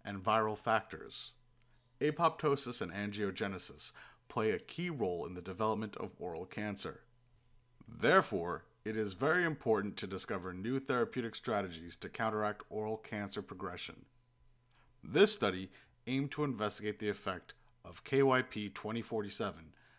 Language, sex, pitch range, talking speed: English, male, 105-125 Hz, 125 wpm